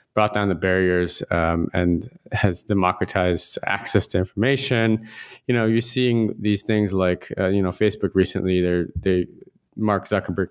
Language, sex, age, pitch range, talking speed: English, male, 20-39, 90-110 Hz, 155 wpm